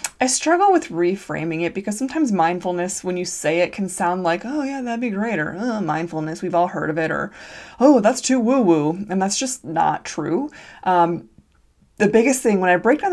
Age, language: 20-39, English